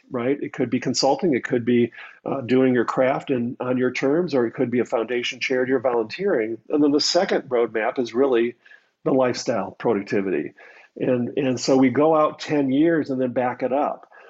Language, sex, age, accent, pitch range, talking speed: English, male, 50-69, American, 120-140 Hz, 200 wpm